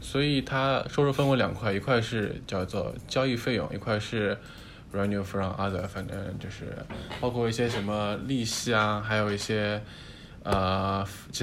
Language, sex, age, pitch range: Chinese, male, 20-39, 100-130 Hz